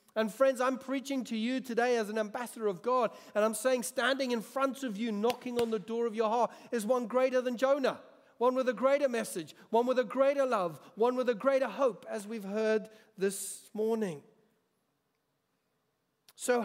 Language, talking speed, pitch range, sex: English, 190 wpm, 185-235 Hz, male